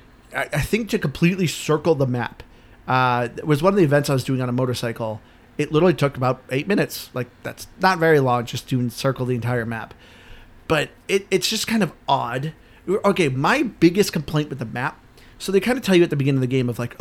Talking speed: 230 wpm